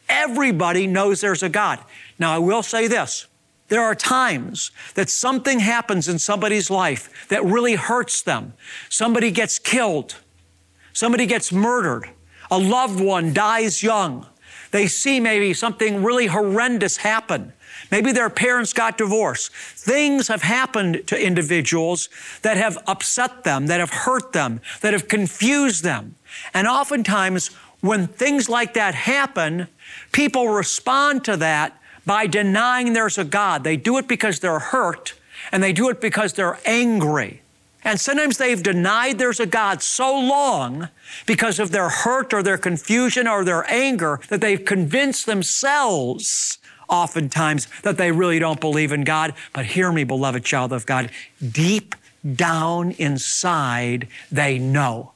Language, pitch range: English, 170-235 Hz